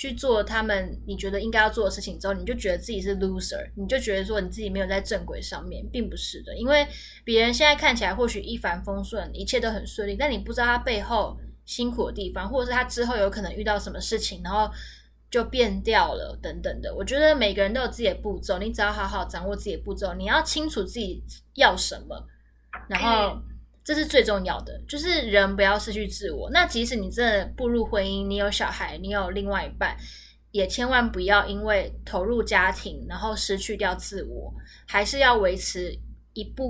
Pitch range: 195-240 Hz